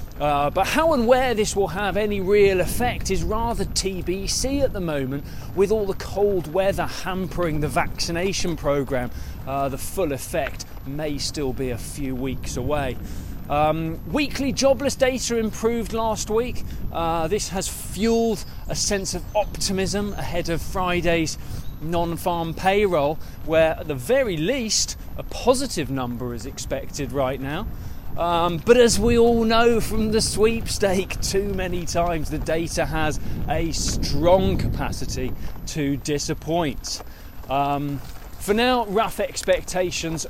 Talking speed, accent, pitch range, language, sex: 140 wpm, British, 140-210 Hz, English, male